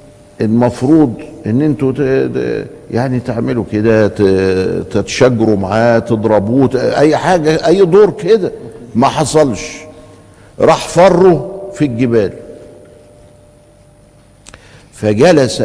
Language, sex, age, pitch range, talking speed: Arabic, male, 50-69, 105-145 Hz, 80 wpm